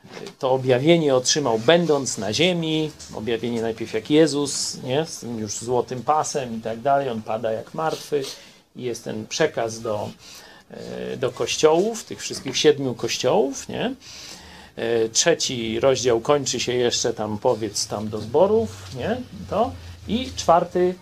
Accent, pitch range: native, 115-160 Hz